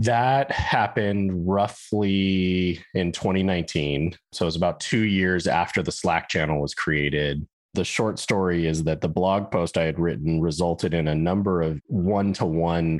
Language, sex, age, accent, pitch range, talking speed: English, male, 30-49, American, 75-95 Hz, 155 wpm